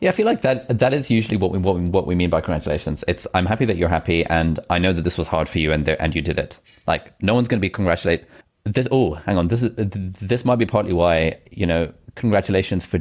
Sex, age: male, 30-49